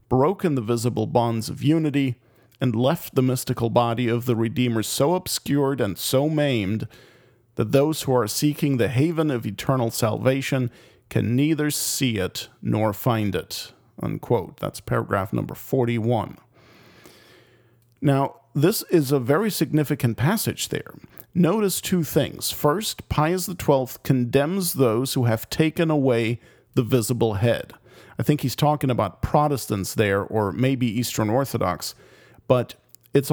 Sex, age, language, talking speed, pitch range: male, 40-59, English, 135 wpm, 120-150 Hz